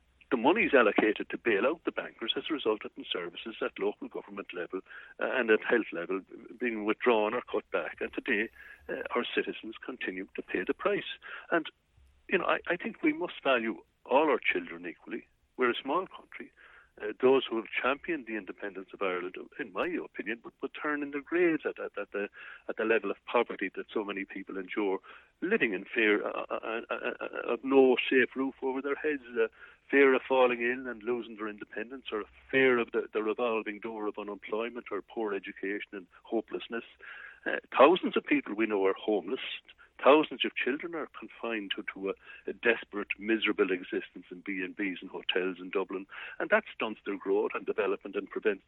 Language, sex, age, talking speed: English, male, 60-79, 190 wpm